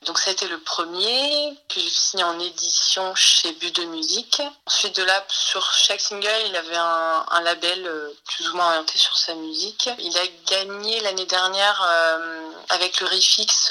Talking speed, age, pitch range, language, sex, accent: 180 wpm, 20-39, 165-205 Hz, French, female, French